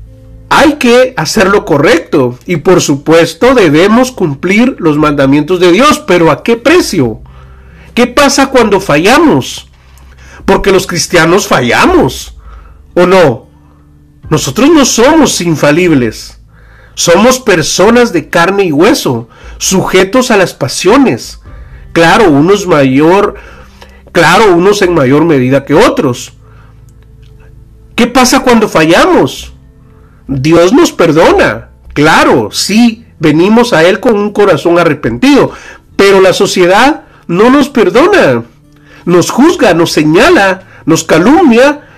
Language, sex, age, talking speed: Spanish, male, 40-59, 115 wpm